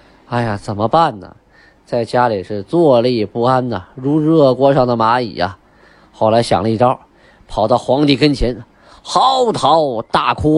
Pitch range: 120-160 Hz